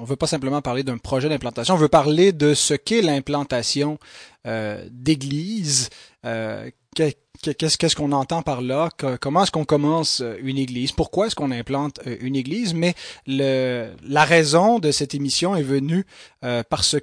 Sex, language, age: male, English, 30-49